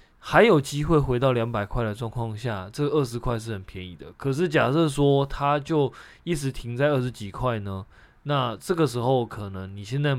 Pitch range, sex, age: 105-140 Hz, male, 20-39